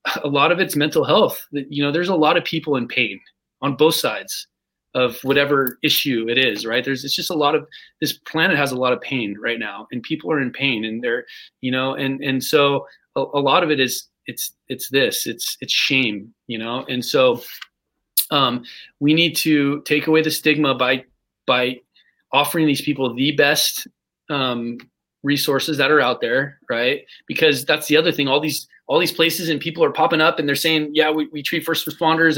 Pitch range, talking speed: 125-155 Hz, 210 wpm